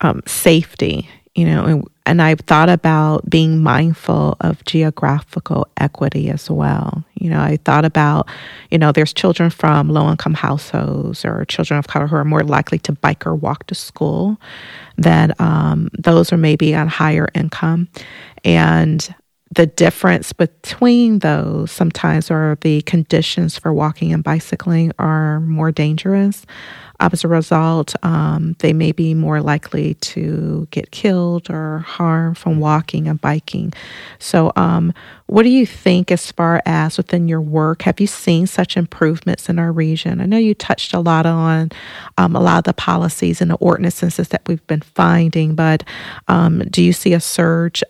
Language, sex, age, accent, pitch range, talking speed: English, female, 40-59, American, 155-175 Hz, 165 wpm